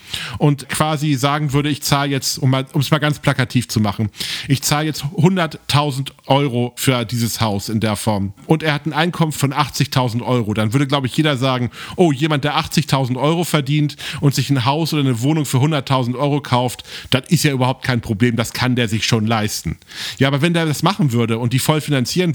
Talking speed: 210 wpm